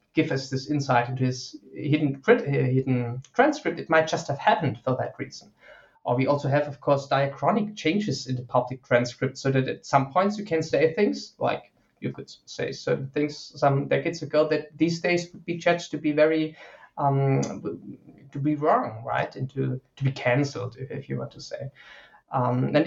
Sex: male